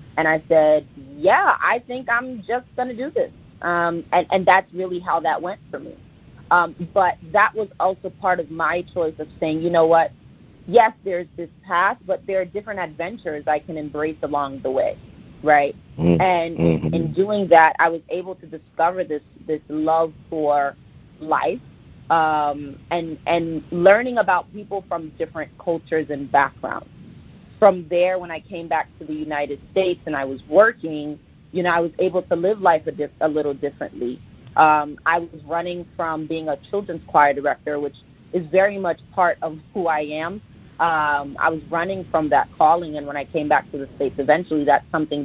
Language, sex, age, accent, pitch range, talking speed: English, female, 30-49, American, 150-180 Hz, 185 wpm